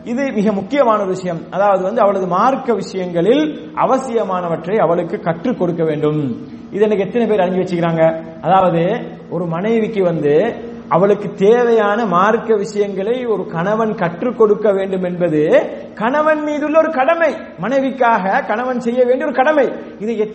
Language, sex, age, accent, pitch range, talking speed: English, male, 30-49, Indian, 190-255 Hz, 115 wpm